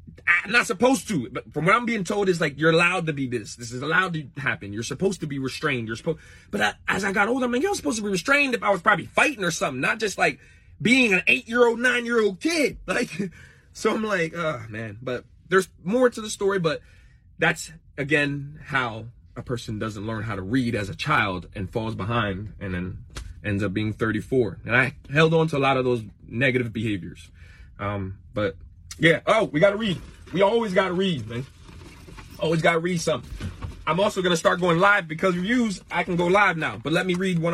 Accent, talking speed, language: American, 220 wpm, English